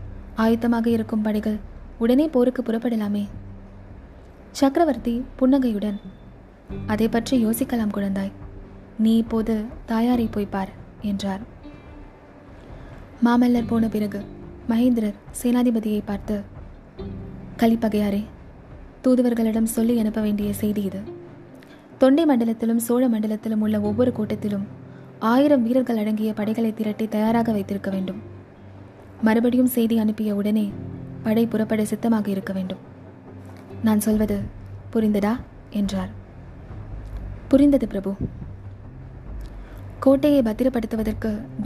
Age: 20-39